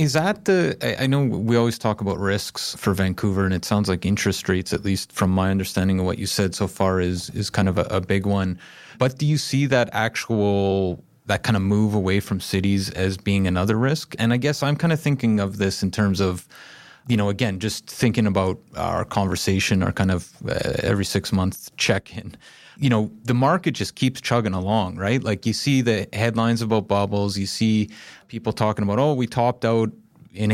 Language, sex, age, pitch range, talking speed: English, male, 30-49, 100-120 Hz, 215 wpm